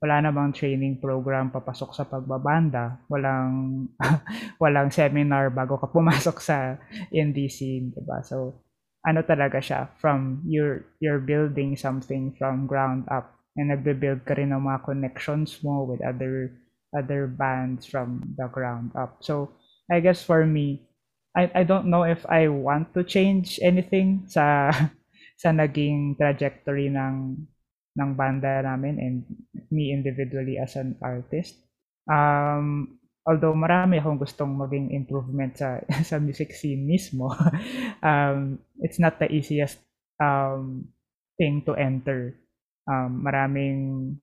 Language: Filipino